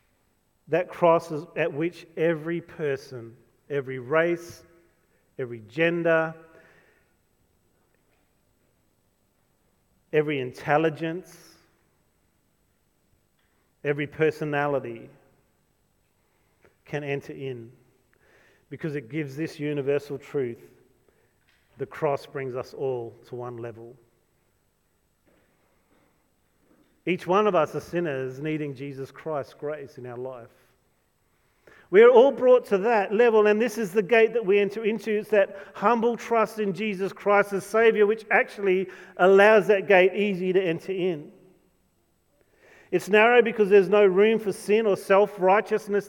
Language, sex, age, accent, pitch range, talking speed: English, male, 40-59, Australian, 135-200 Hz, 115 wpm